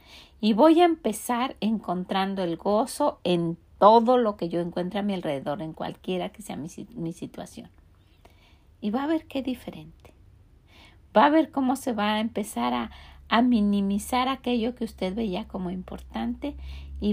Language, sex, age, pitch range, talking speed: Spanish, female, 50-69, 185-250 Hz, 165 wpm